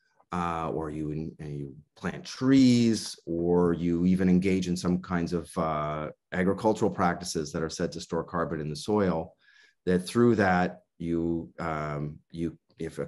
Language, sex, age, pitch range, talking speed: English, male, 30-49, 85-110 Hz, 155 wpm